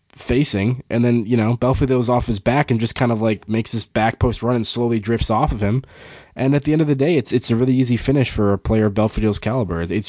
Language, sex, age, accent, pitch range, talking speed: English, male, 20-39, American, 95-115 Hz, 270 wpm